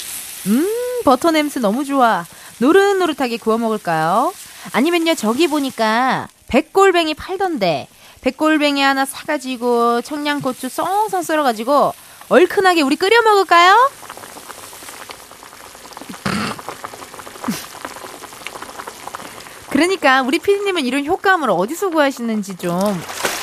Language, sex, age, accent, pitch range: Korean, female, 20-39, native, 200-320 Hz